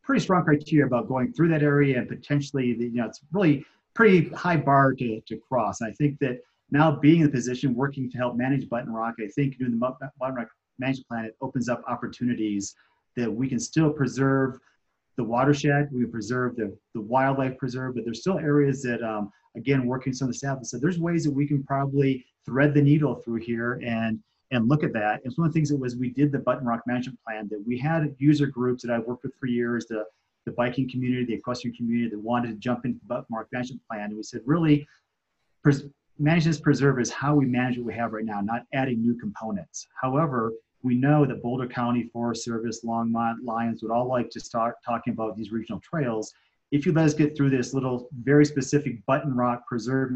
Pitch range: 115-140 Hz